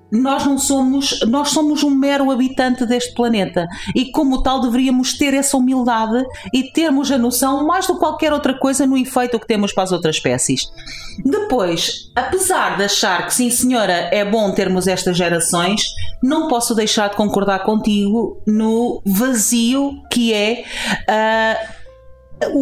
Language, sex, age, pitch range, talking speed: Portuguese, female, 40-59, 190-270 Hz, 155 wpm